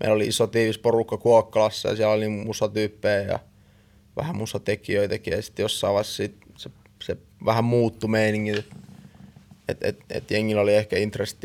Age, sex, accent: 20-39, male, native